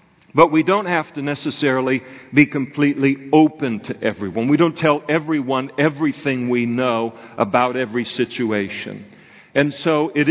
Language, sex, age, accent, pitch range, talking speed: English, male, 50-69, American, 115-140 Hz, 140 wpm